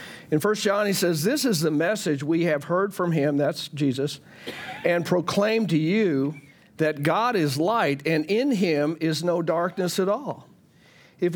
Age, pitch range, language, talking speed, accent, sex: 50-69, 155-195 Hz, English, 175 wpm, American, male